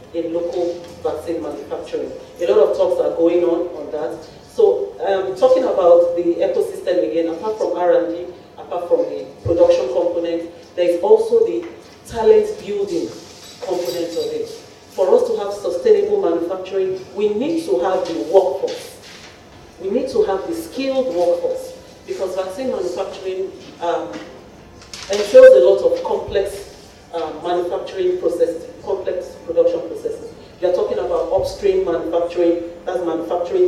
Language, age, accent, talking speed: English, 40-59, Nigerian, 135 wpm